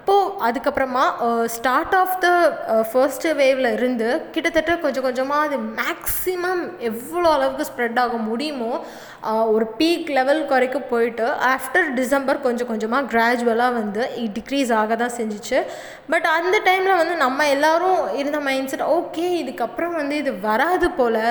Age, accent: 20-39, native